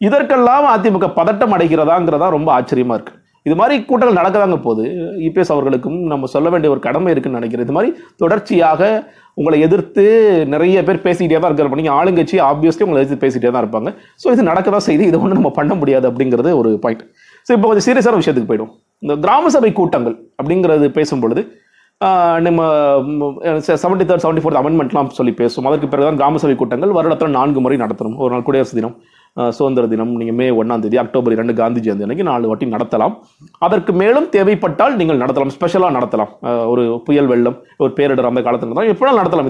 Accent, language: native, Tamil